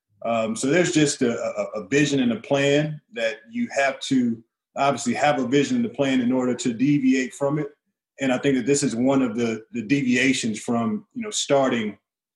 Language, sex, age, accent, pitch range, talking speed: English, male, 30-49, American, 120-145 Hz, 210 wpm